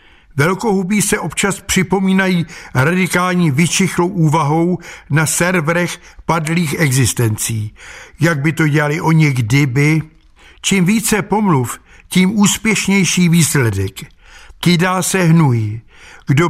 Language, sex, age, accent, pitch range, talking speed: Czech, male, 60-79, native, 145-190 Hz, 100 wpm